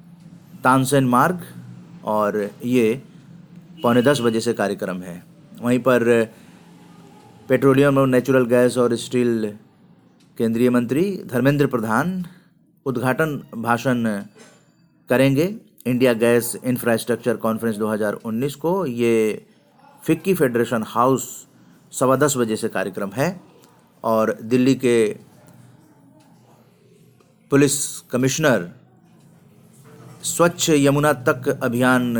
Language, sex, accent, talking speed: Hindi, male, native, 95 wpm